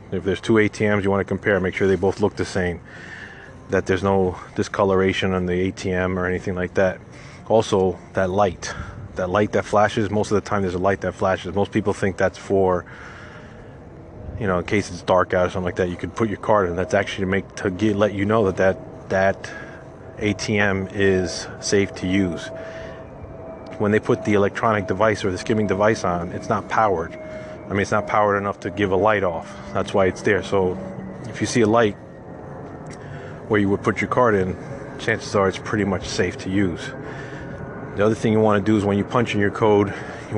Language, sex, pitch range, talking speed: English, male, 95-105 Hz, 215 wpm